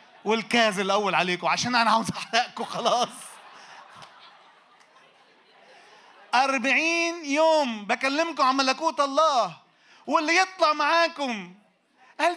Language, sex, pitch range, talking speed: Arabic, male, 165-265 Hz, 85 wpm